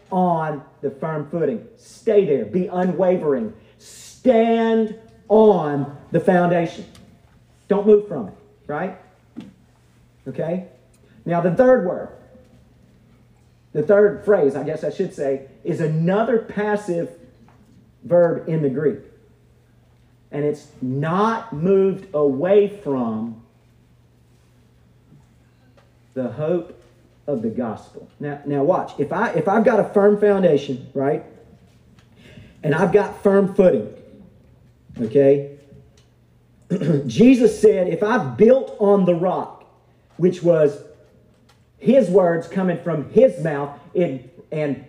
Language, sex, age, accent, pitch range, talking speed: English, male, 40-59, American, 140-205 Hz, 110 wpm